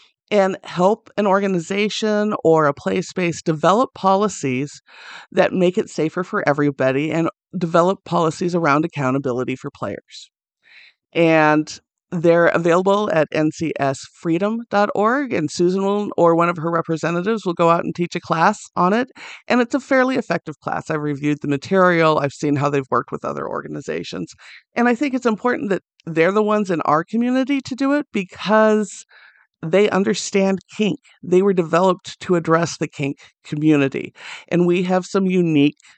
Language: English